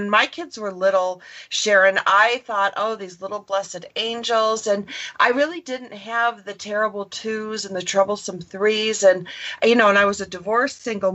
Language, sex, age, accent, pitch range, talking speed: English, female, 40-59, American, 185-230 Hz, 190 wpm